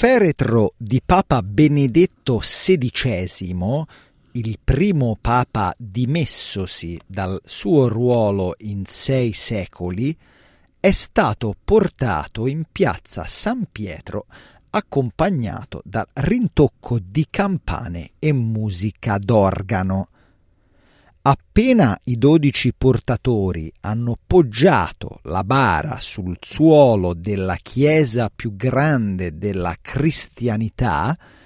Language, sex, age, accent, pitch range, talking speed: Italian, male, 40-59, native, 95-145 Hz, 90 wpm